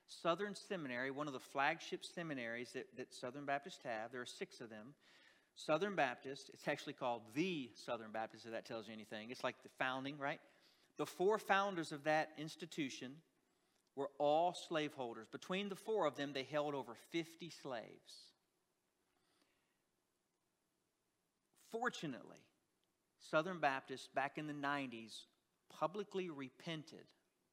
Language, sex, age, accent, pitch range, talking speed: English, male, 50-69, American, 130-170 Hz, 135 wpm